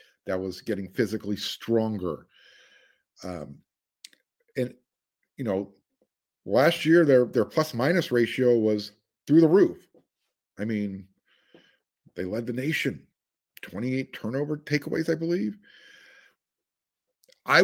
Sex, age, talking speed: male, 50-69, 110 wpm